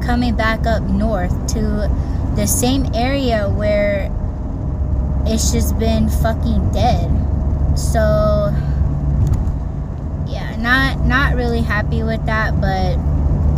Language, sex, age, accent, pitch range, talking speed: English, female, 20-39, American, 75-80 Hz, 100 wpm